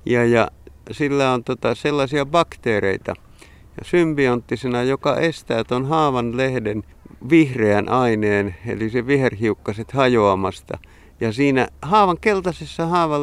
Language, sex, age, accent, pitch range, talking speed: Finnish, male, 50-69, native, 105-140 Hz, 115 wpm